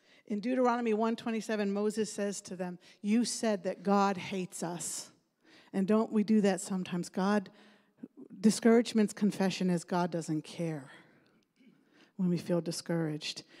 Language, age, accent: English, 50-69, American